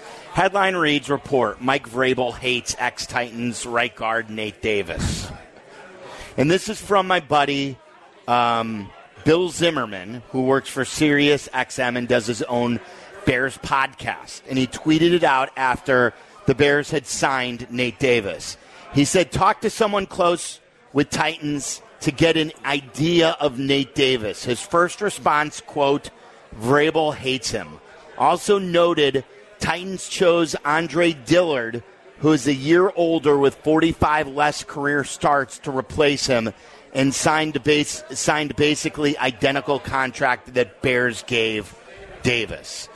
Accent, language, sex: American, English, male